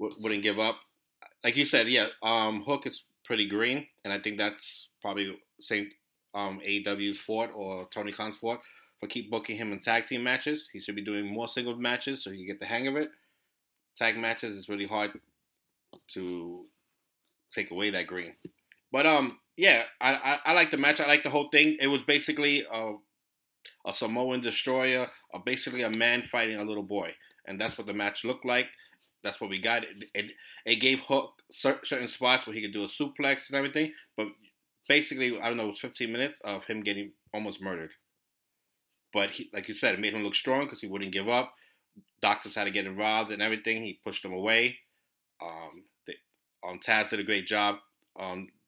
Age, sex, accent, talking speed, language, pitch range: 30-49, male, American, 200 wpm, English, 105-130 Hz